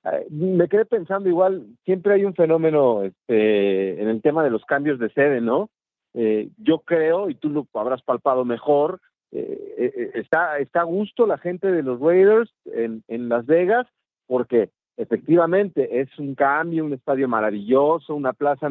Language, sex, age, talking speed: Spanish, male, 40-59, 165 wpm